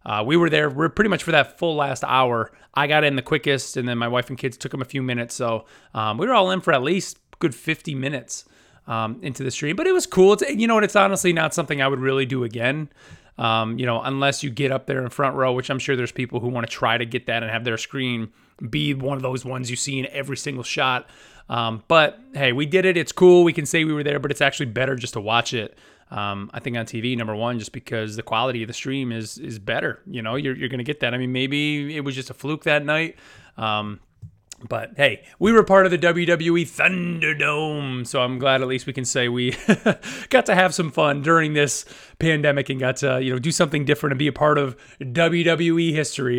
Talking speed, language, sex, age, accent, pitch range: 255 wpm, English, male, 30-49, American, 125-160 Hz